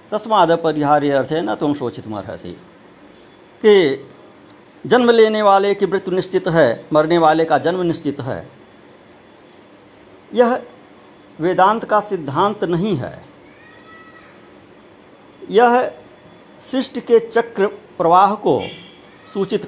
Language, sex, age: Hindi, male, 60-79